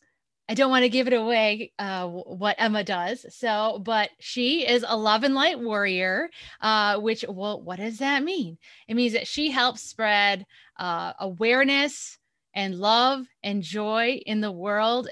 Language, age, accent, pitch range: English, 20-39, American, 205-260 Hz